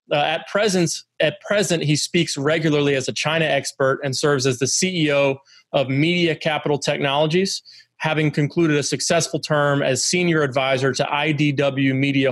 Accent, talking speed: American, 150 wpm